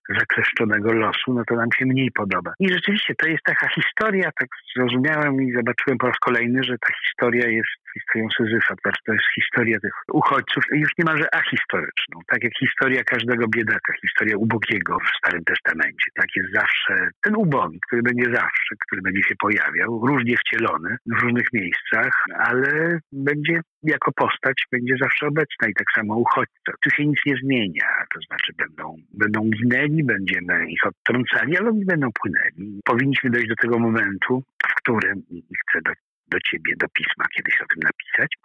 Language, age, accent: Polish, 50-69, native